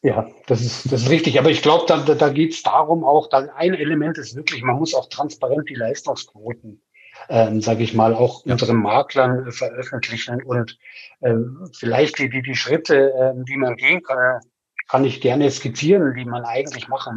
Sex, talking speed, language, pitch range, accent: male, 190 wpm, German, 125-155 Hz, German